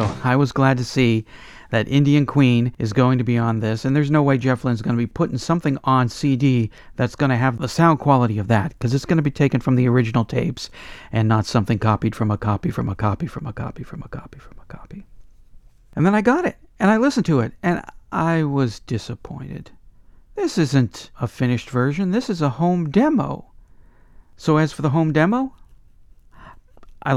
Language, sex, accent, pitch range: English, male, American, 115-145 Hz